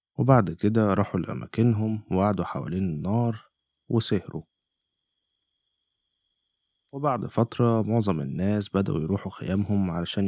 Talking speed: 95 wpm